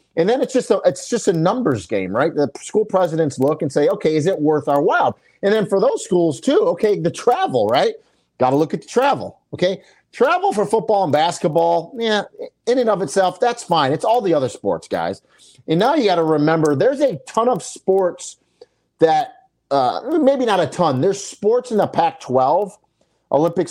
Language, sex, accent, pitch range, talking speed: English, male, American, 135-190 Hz, 200 wpm